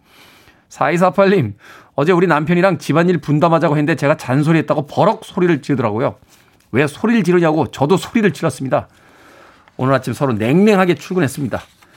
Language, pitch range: Korean, 110-165 Hz